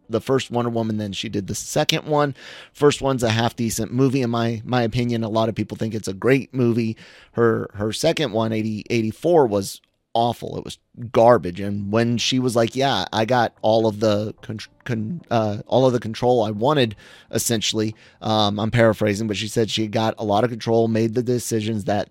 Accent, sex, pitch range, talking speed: American, male, 110-130 Hz, 210 wpm